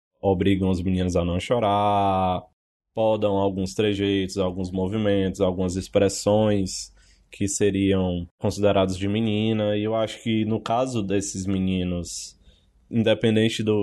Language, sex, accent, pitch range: Portuguese, male, Brazilian, 95-115 Hz